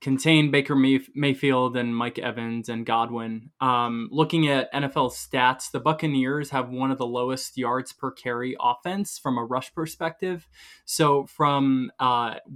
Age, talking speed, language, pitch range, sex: 20-39, 150 wpm, English, 130-160 Hz, male